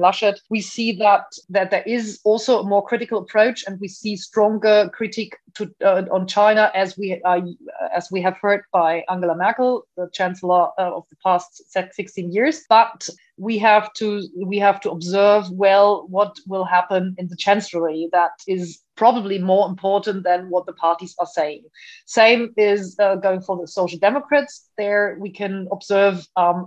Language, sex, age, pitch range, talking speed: English, female, 30-49, 185-215 Hz, 175 wpm